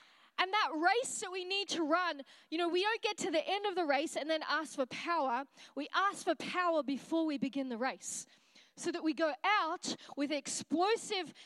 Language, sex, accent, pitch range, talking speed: English, female, Australian, 250-335 Hz, 210 wpm